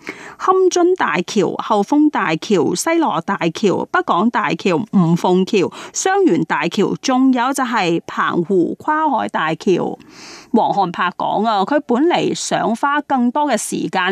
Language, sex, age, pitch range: Chinese, female, 30-49, 185-295 Hz